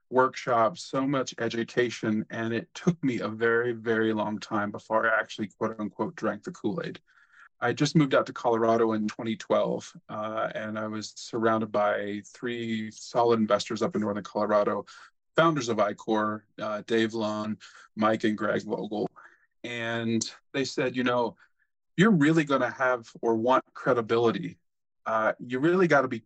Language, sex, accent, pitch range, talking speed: English, male, American, 110-130 Hz, 160 wpm